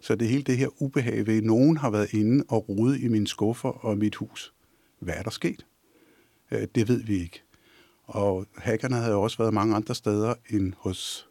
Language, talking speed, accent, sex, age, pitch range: Danish, 200 wpm, native, male, 50-69, 105-125 Hz